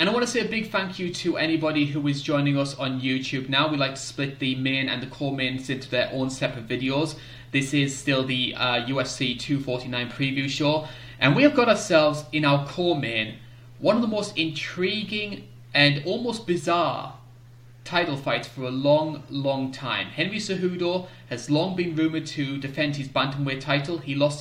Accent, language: British, English